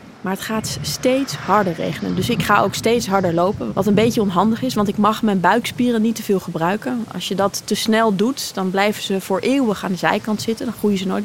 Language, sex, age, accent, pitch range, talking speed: Dutch, female, 20-39, Dutch, 190-225 Hz, 245 wpm